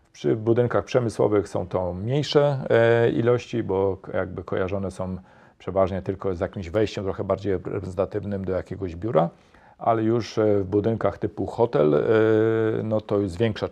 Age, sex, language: 40-59, male, Polish